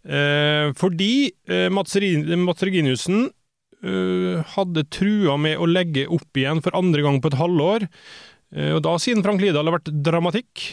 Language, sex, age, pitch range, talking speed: English, male, 20-39, 145-175 Hz, 170 wpm